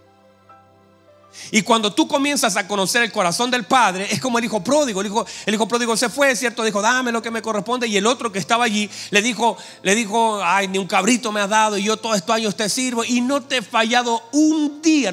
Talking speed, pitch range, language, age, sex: 240 wpm, 170-230 Hz, Spanish, 40-59, male